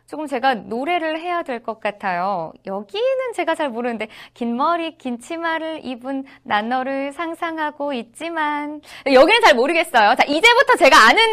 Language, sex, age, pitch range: Korean, female, 20-39, 225-320 Hz